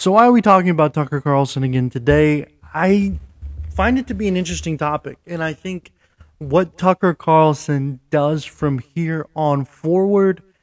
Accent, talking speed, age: American, 165 wpm, 20-39